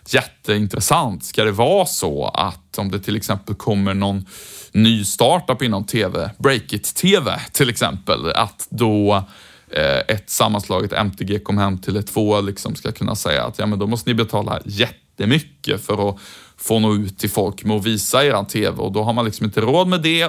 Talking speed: 190 wpm